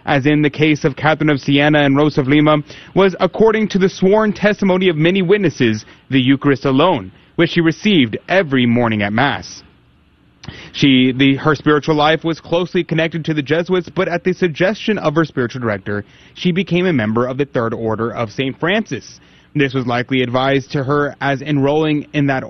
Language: English